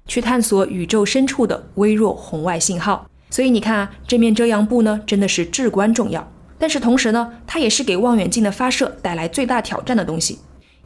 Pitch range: 195-255 Hz